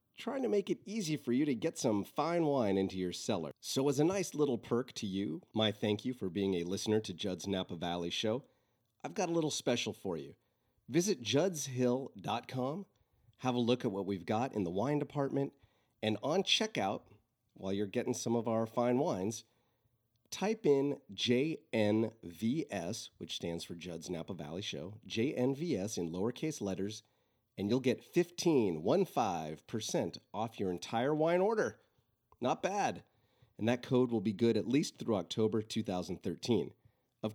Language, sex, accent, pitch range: English, male, American, 100-130 Hz